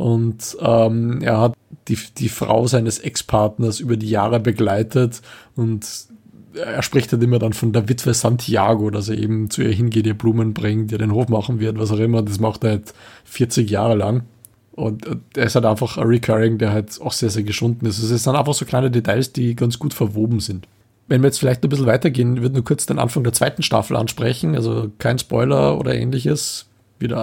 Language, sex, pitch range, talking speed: German, male, 110-125 Hz, 205 wpm